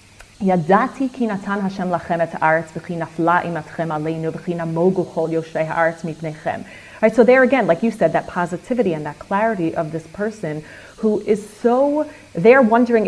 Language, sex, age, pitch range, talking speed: English, female, 30-49, 170-230 Hz, 90 wpm